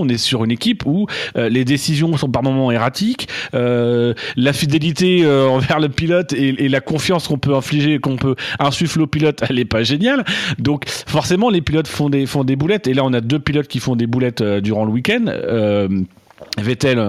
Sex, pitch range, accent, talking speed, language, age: male, 125-165 Hz, French, 215 wpm, French, 40-59